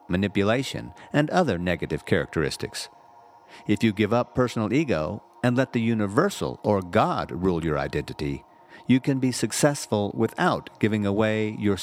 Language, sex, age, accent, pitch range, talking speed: English, male, 50-69, American, 95-130 Hz, 140 wpm